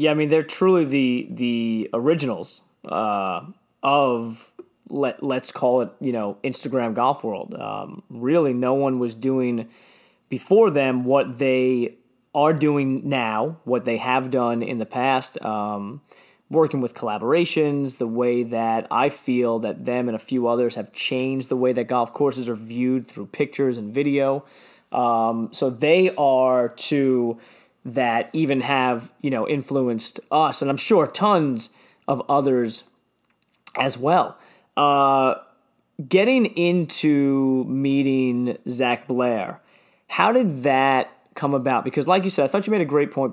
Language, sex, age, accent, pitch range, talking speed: English, male, 20-39, American, 120-140 Hz, 150 wpm